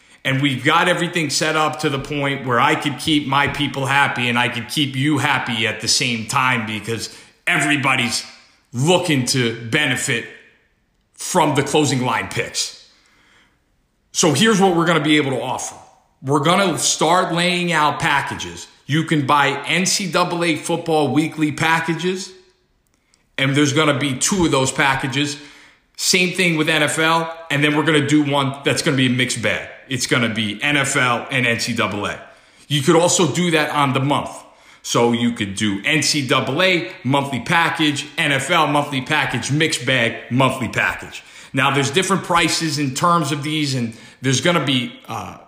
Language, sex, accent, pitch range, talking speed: English, male, American, 130-165 Hz, 170 wpm